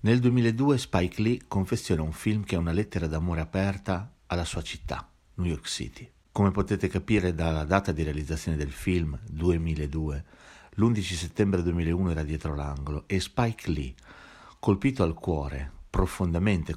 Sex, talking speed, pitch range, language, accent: male, 150 wpm, 80-105 Hz, Italian, native